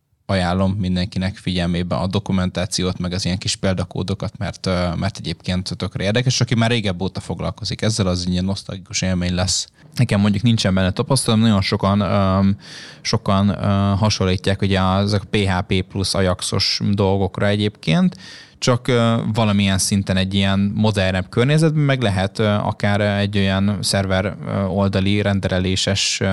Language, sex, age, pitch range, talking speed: Hungarian, male, 20-39, 95-105 Hz, 135 wpm